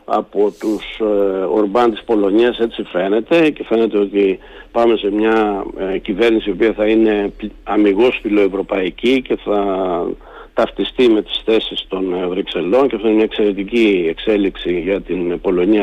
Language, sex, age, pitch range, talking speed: Greek, male, 50-69, 105-150 Hz, 150 wpm